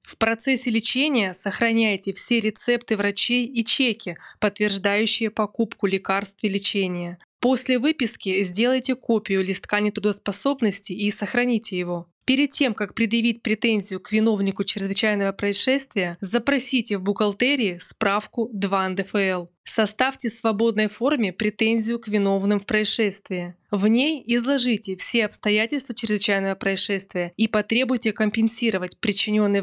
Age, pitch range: 20-39, 195-235 Hz